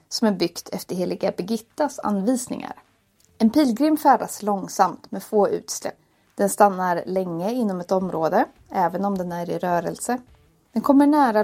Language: Swedish